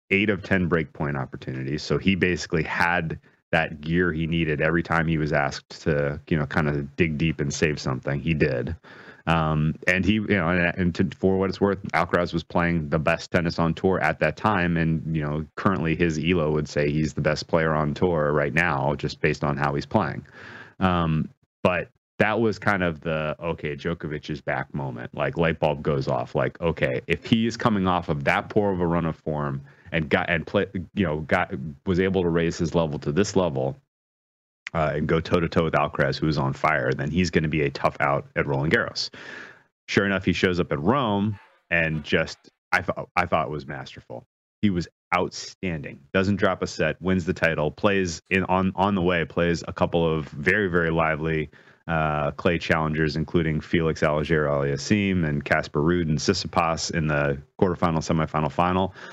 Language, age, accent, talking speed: English, 30-49, American, 200 wpm